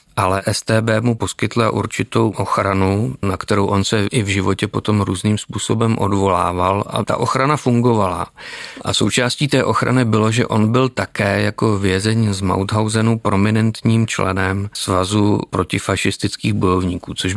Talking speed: 140 wpm